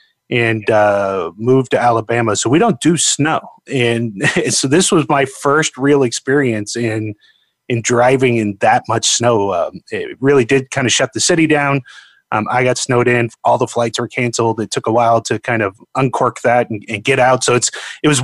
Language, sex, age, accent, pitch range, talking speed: English, male, 30-49, American, 115-140 Hz, 205 wpm